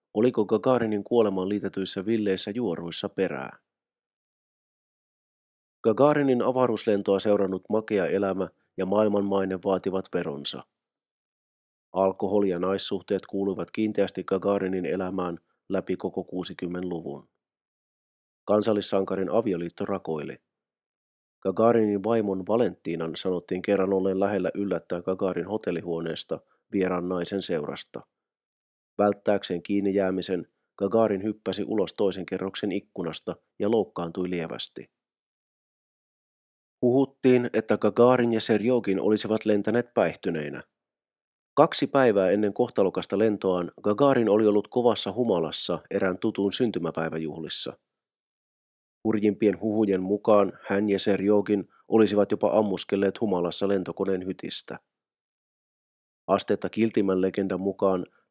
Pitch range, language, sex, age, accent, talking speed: 95-105 Hz, Finnish, male, 30-49, native, 95 wpm